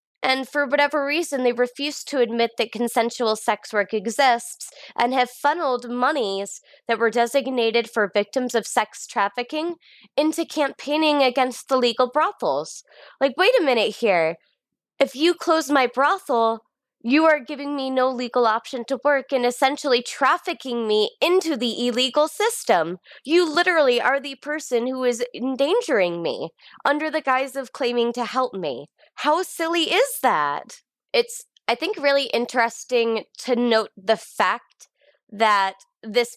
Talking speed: 150 wpm